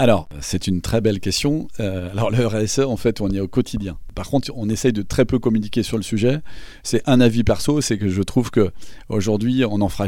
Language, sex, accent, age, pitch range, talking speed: French, male, French, 40-59, 100-125 Hz, 230 wpm